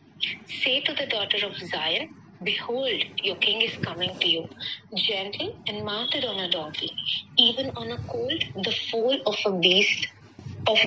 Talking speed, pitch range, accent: 160 wpm, 185-255 Hz, native